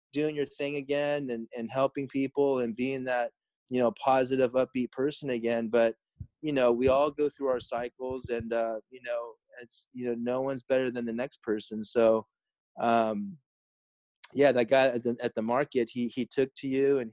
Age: 20-39